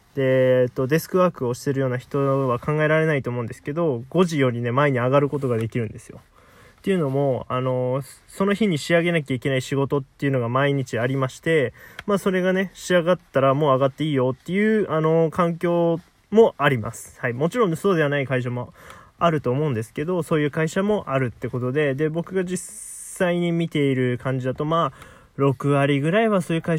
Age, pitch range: 20-39, 125-170 Hz